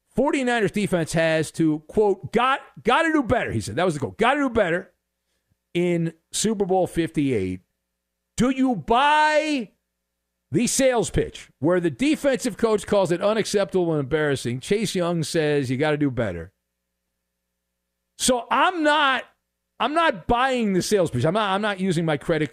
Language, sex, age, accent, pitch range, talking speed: English, male, 50-69, American, 130-195 Hz, 170 wpm